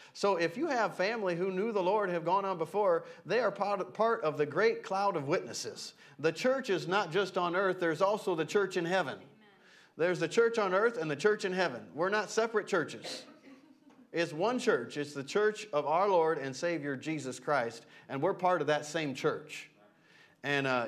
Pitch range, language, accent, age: 150-210 Hz, English, American, 40-59